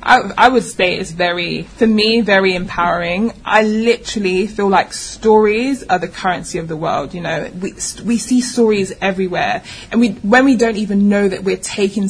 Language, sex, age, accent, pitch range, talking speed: English, female, 20-39, British, 195-215 Hz, 190 wpm